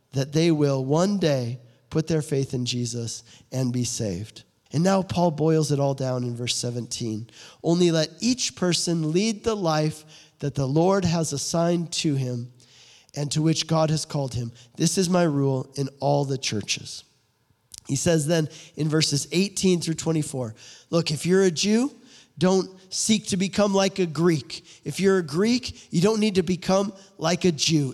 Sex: male